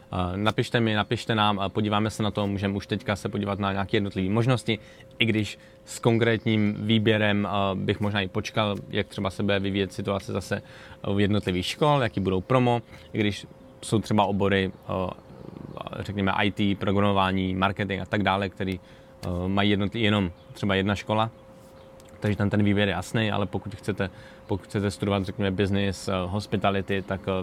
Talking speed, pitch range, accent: 160 wpm, 95-110 Hz, native